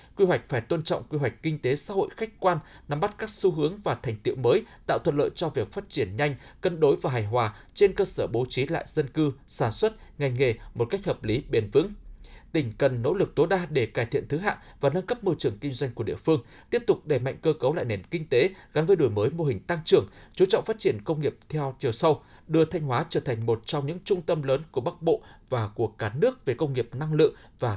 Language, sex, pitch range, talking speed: Vietnamese, male, 125-185 Hz, 270 wpm